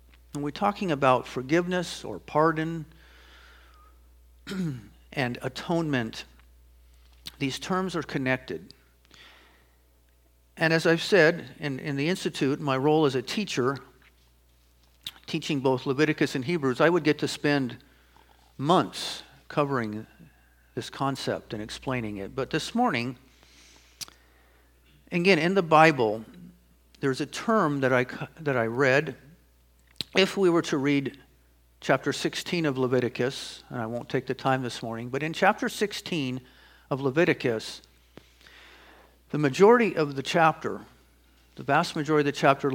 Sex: male